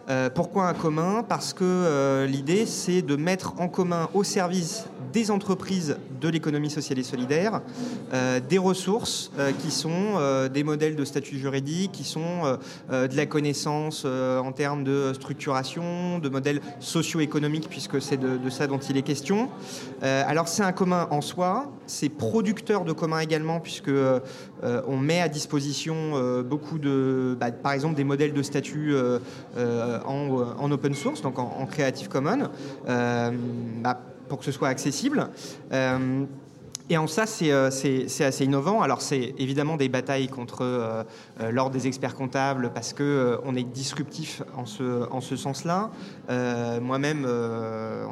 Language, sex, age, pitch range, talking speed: French, male, 30-49, 130-160 Hz, 175 wpm